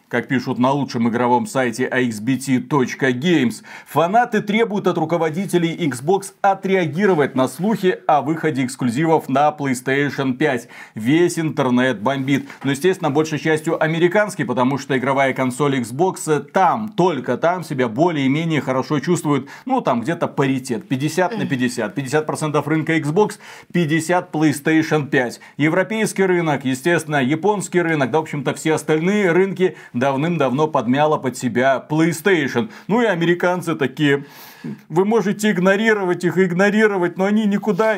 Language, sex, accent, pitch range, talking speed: Russian, male, native, 140-210 Hz, 130 wpm